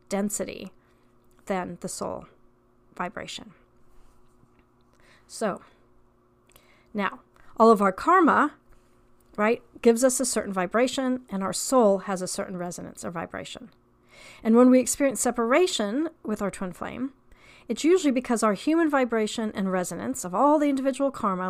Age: 40-59